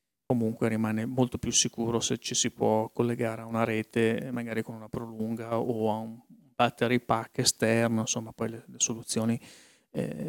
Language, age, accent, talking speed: Italian, 40-59, native, 165 wpm